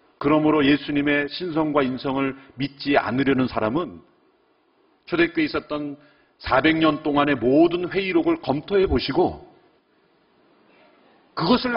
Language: Korean